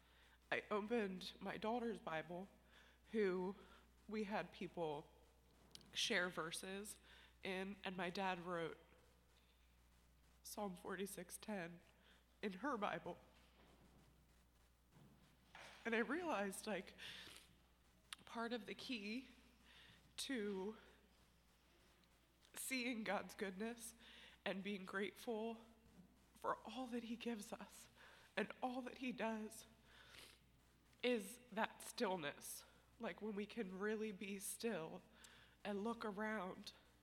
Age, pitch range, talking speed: 20-39, 155-220 Hz, 95 wpm